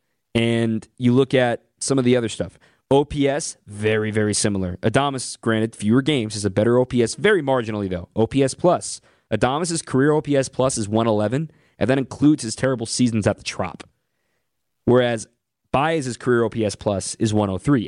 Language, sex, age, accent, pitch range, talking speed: English, male, 20-39, American, 105-135 Hz, 160 wpm